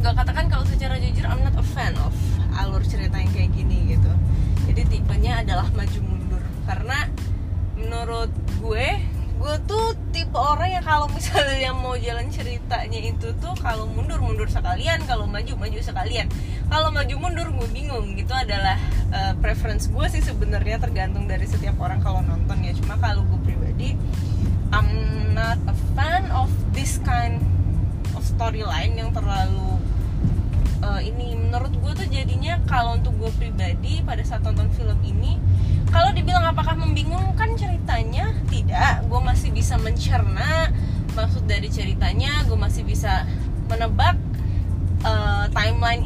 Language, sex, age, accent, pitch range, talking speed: Indonesian, female, 20-39, native, 90-95 Hz, 140 wpm